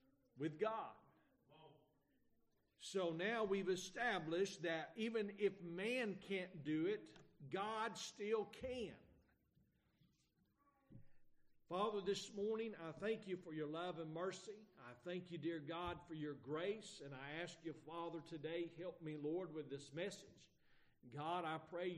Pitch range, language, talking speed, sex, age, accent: 145-195 Hz, English, 135 wpm, male, 50-69, American